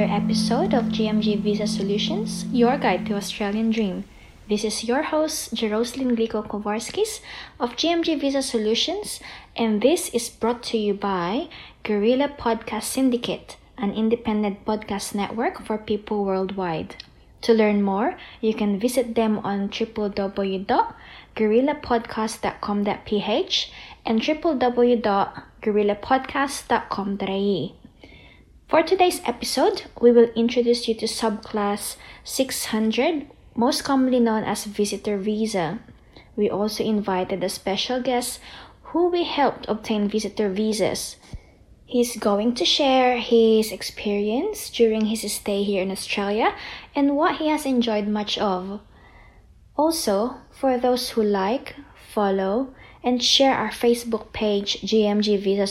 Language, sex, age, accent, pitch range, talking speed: English, female, 20-39, Filipino, 205-250 Hz, 115 wpm